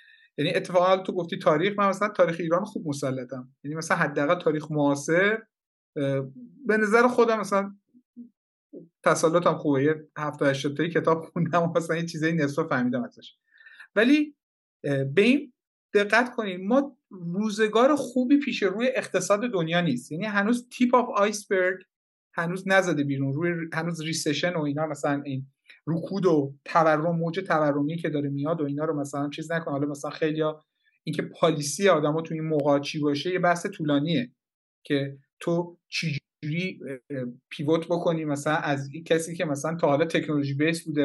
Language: Persian